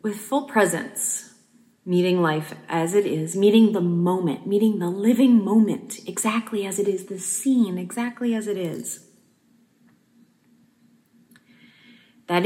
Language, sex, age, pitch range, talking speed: English, female, 30-49, 175-235 Hz, 125 wpm